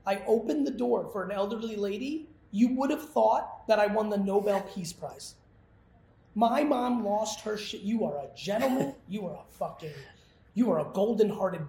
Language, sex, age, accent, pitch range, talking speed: English, male, 30-49, American, 175-220 Hz, 190 wpm